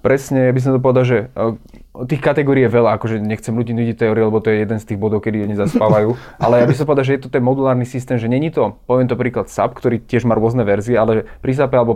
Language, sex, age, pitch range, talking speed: Slovak, male, 20-39, 115-130 Hz, 270 wpm